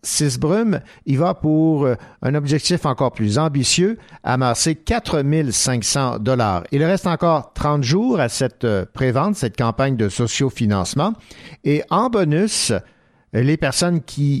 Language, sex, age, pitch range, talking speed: French, male, 50-69, 120-160 Hz, 130 wpm